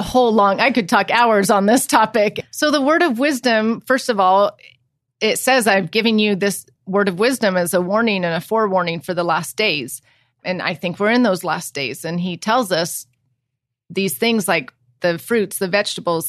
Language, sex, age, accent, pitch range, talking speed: English, female, 30-49, American, 170-205 Hz, 205 wpm